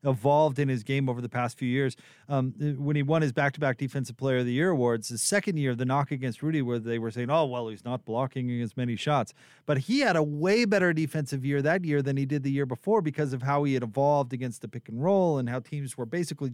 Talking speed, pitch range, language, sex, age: 260 wpm, 125-150 Hz, English, male, 30-49